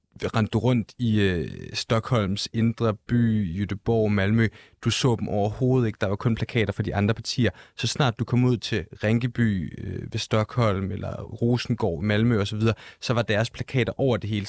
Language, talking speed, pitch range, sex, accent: Danish, 180 wpm, 100-120 Hz, male, native